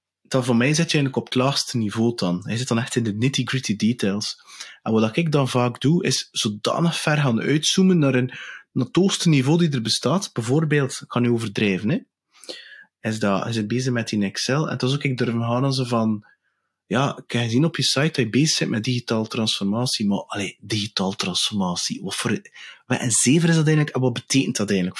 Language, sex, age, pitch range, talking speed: English, male, 30-49, 115-150 Hz, 220 wpm